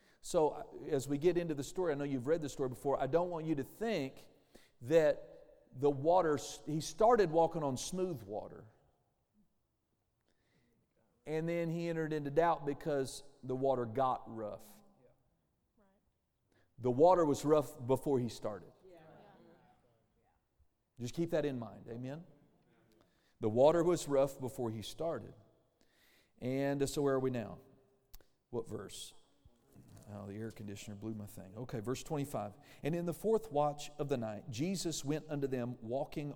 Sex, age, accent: male, 40-59, American